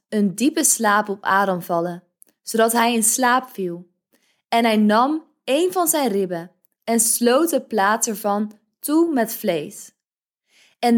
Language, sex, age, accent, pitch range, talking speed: Dutch, female, 20-39, Dutch, 195-245 Hz, 150 wpm